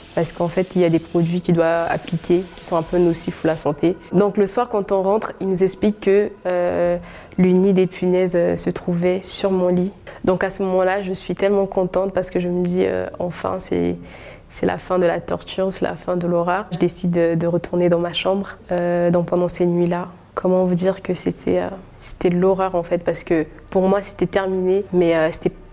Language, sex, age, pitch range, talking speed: French, female, 20-39, 170-185 Hz, 230 wpm